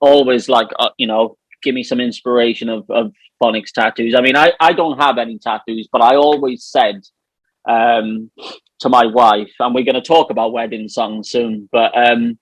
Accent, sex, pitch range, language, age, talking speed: British, male, 115-135 Hz, English, 20-39, 190 wpm